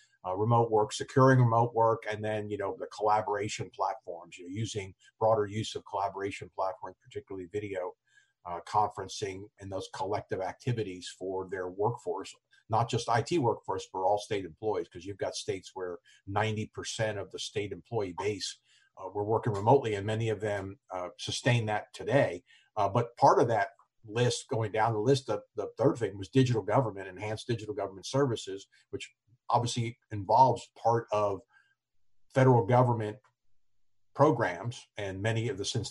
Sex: male